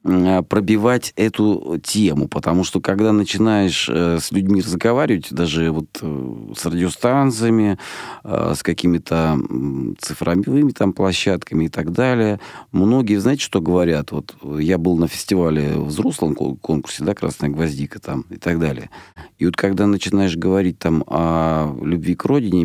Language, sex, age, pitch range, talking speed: Russian, male, 40-59, 85-105 Hz, 125 wpm